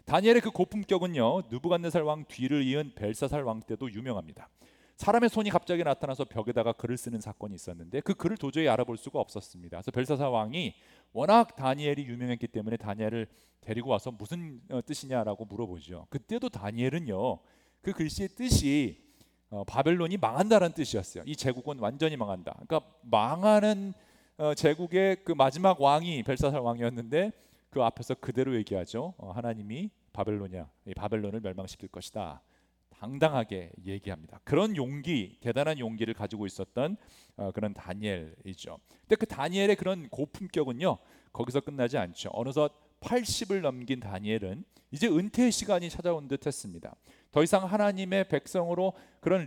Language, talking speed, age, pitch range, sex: English, 120 wpm, 40-59, 110-175 Hz, male